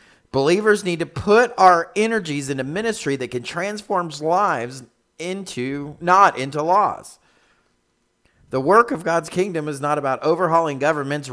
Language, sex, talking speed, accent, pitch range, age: English, male, 140 wpm, American, 120-155 Hz, 40-59